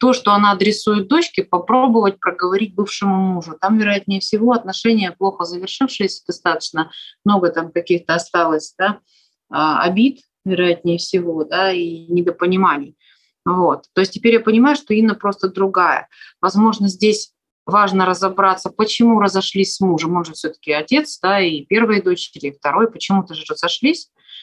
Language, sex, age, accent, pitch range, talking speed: Russian, female, 30-49, native, 170-215 Hz, 140 wpm